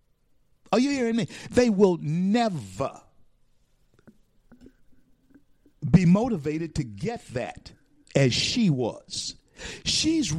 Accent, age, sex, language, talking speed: American, 50-69, male, English, 90 wpm